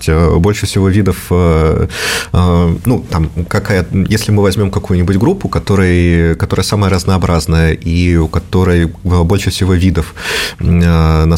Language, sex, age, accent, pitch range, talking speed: Russian, male, 30-49, native, 85-95 Hz, 110 wpm